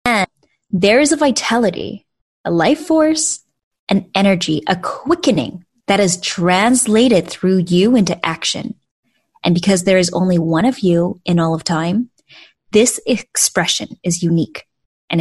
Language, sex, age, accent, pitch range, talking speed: English, female, 20-39, American, 175-235 Hz, 140 wpm